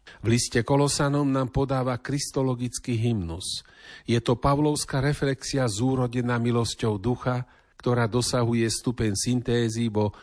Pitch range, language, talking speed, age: 105-125 Hz, Slovak, 110 wpm, 50-69